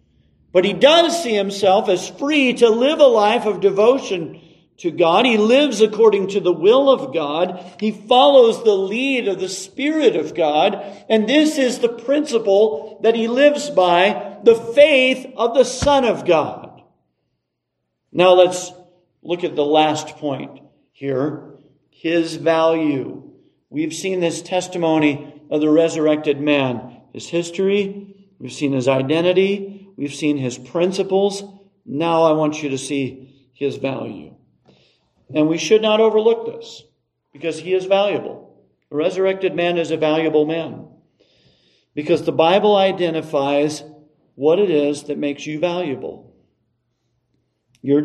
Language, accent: English, American